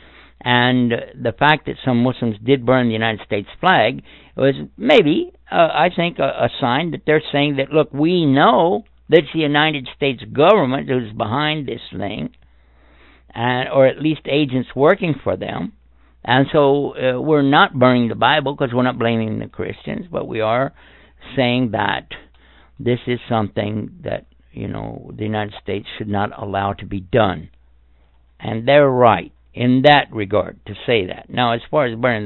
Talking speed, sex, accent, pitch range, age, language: 175 wpm, male, American, 105-135 Hz, 60-79, German